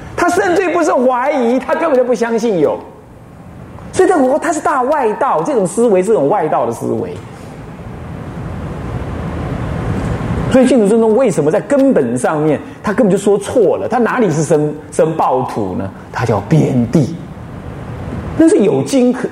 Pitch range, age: 185-305 Hz, 30-49